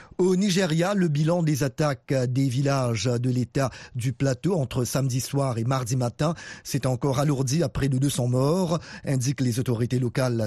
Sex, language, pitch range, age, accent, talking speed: male, French, 125-155 Hz, 40-59, French, 170 wpm